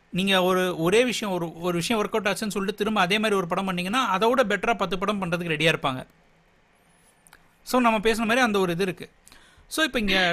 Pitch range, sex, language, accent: 165-225 Hz, male, Tamil, native